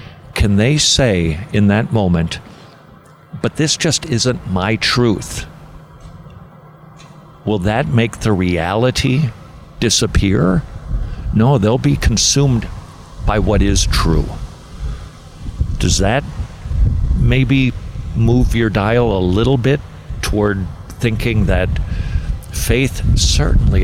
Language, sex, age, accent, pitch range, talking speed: English, male, 50-69, American, 95-120 Hz, 100 wpm